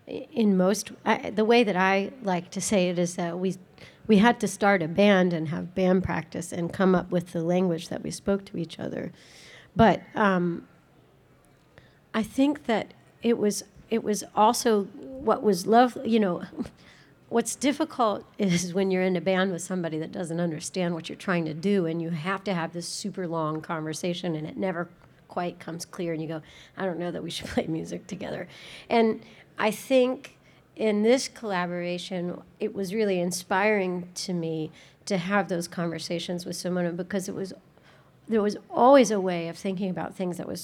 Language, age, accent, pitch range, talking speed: English, 40-59, American, 175-210 Hz, 190 wpm